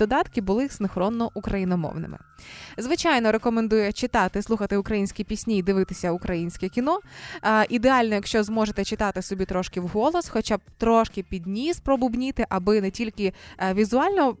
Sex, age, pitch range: female, 20-39, 190-250 Hz